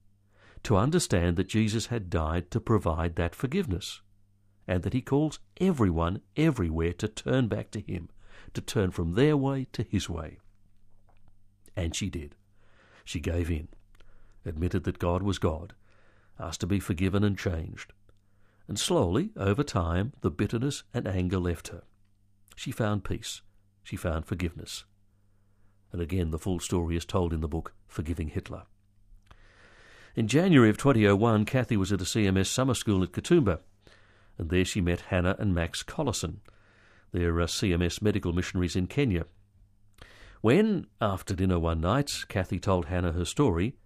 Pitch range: 90-105 Hz